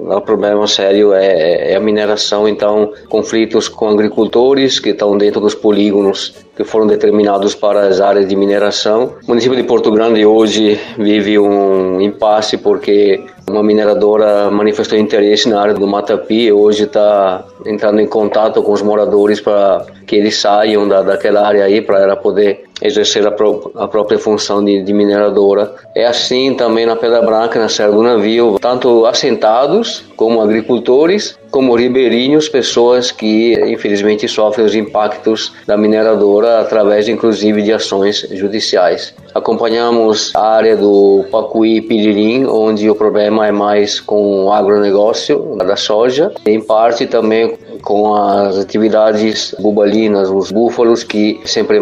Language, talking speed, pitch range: Portuguese, 145 wpm, 105-110 Hz